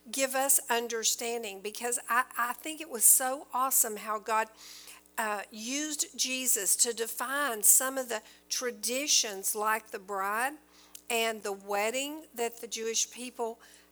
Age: 50-69